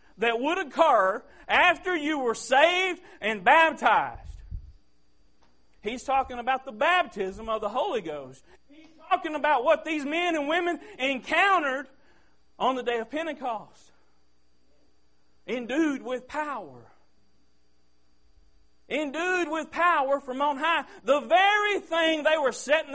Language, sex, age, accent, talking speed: English, male, 40-59, American, 125 wpm